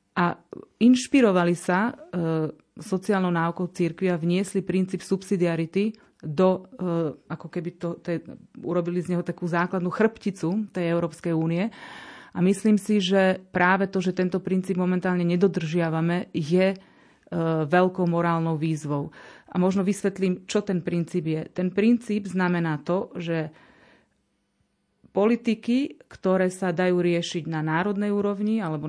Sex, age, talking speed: female, 30-49, 130 wpm